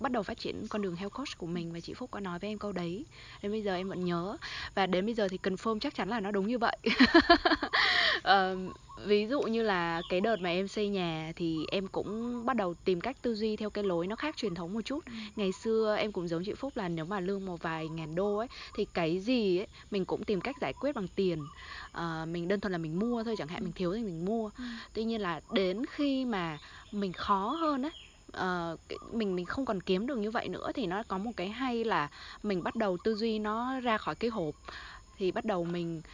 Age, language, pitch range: 20-39, Vietnamese, 180-235 Hz